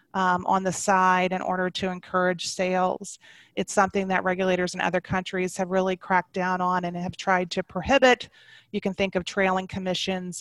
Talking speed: 185 wpm